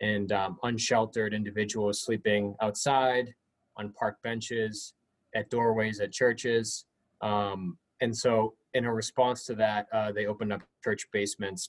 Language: English